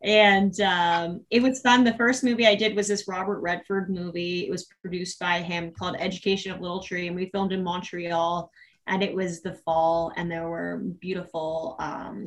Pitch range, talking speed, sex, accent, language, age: 165-190 Hz, 195 wpm, female, American, English, 20-39